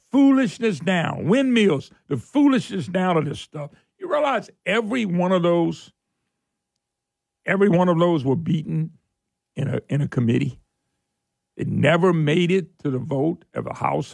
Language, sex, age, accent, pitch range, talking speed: English, male, 60-79, American, 155-185 Hz, 155 wpm